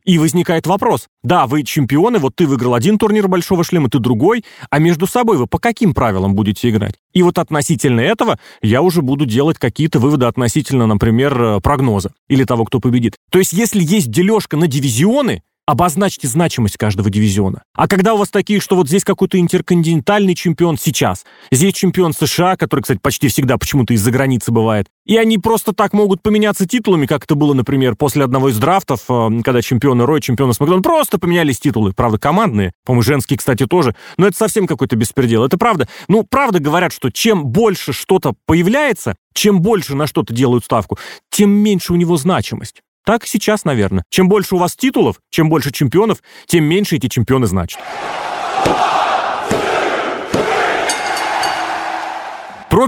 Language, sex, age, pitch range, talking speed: Russian, male, 30-49, 130-195 Hz, 165 wpm